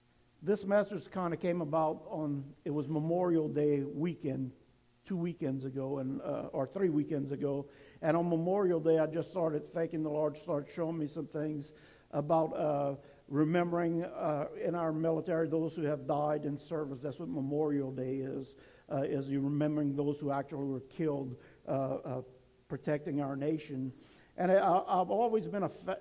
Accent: American